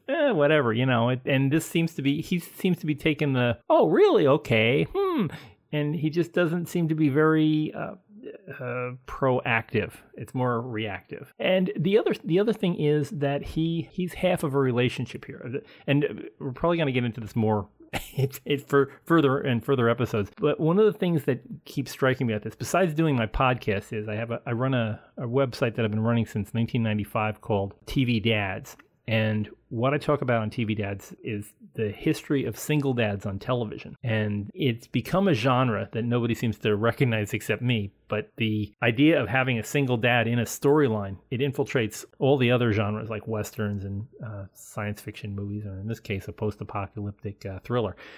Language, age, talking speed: English, 30-49, 195 wpm